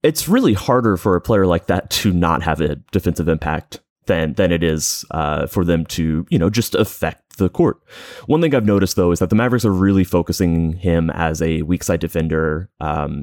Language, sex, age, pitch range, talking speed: English, male, 30-49, 80-95 Hz, 215 wpm